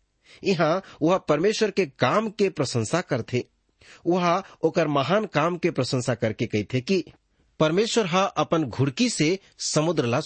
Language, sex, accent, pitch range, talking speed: English, male, Indian, 120-170 Hz, 145 wpm